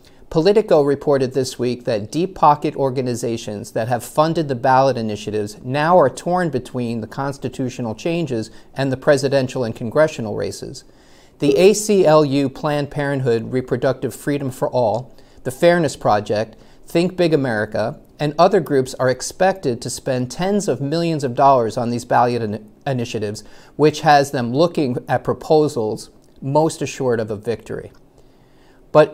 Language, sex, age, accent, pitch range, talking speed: English, male, 40-59, American, 115-155 Hz, 140 wpm